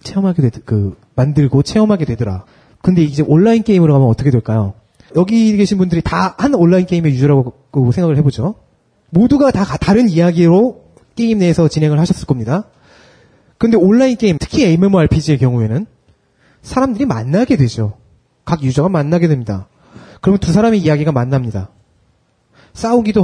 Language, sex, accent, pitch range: Korean, male, native, 135-205 Hz